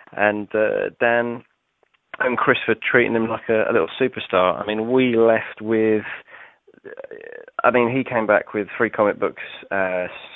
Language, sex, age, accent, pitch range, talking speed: English, male, 20-39, British, 95-115 Hz, 170 wpm